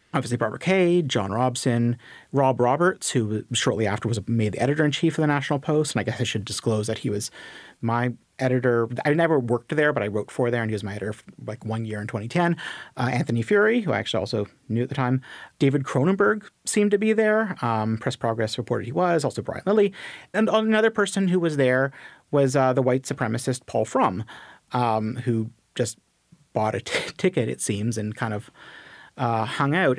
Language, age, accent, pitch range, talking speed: English, 30-49, American, 115-145 Hz, 205 wpm